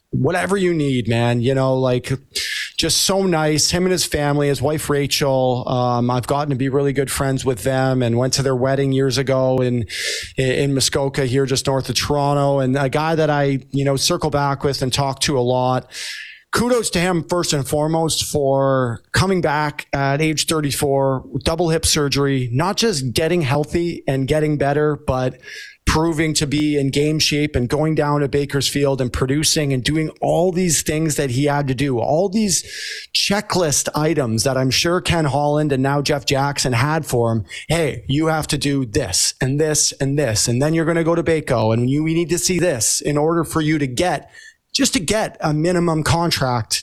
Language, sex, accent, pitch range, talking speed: English, male, American, 135-160 Hz, 200 wpm